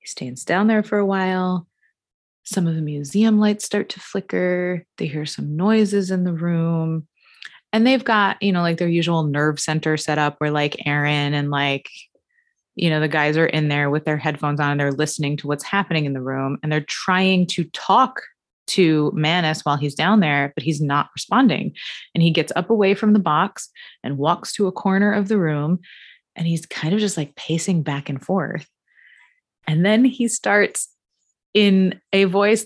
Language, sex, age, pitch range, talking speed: English, female, 20-39, 160-220 Hz, 195 wpm